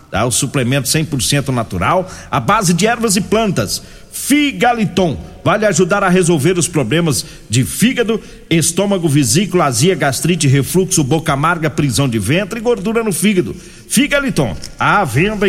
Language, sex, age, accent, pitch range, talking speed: Portuguese, male, 50-69, Brazilian, 140-185 Hz, 145 wpm